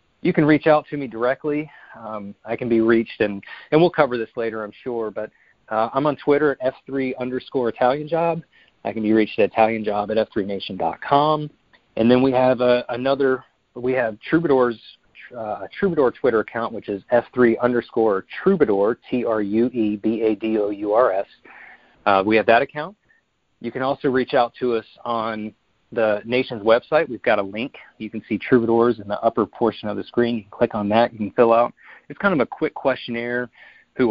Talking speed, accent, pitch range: 185 wpm, American, 110-130 Hz